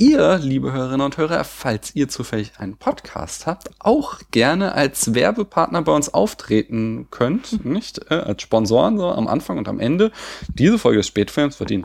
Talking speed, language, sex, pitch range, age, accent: 175 wpm, German, male, 110-170 Hz, 30-49, German